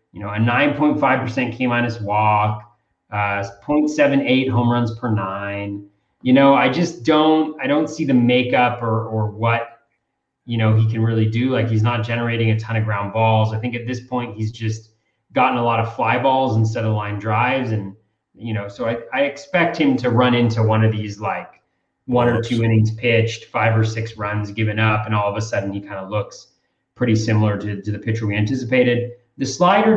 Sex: male